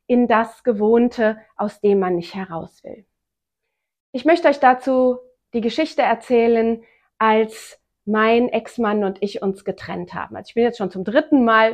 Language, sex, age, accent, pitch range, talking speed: German, female, 40-59, German, 195-230 Hz, 160 wpm